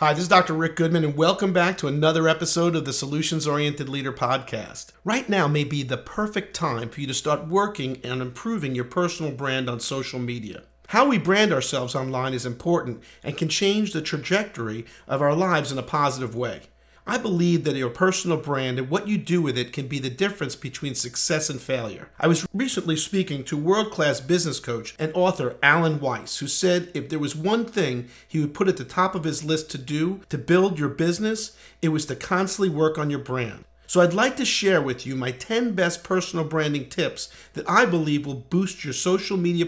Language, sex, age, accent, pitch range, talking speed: English, male, 50-69, American, 130-180 Hz, 210 wpm